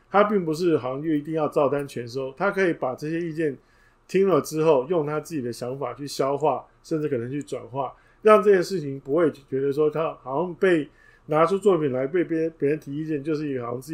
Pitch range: 130-160 Hz